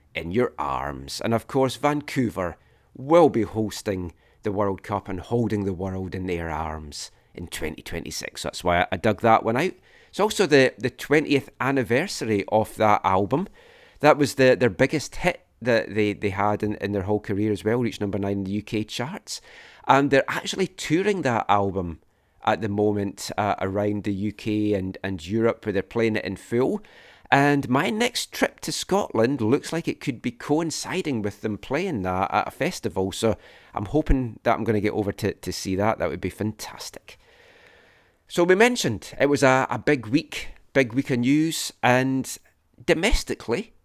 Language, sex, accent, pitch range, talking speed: English, male, British, 100-140 Hz, 185 wpm